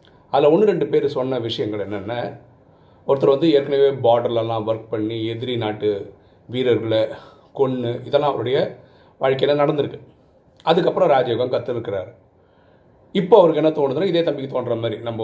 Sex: male